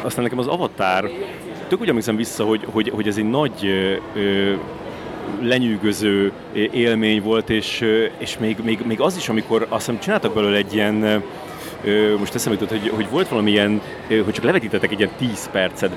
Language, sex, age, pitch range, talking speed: Hungarian, male, 30-49, 105-125 Hz, 170 wpm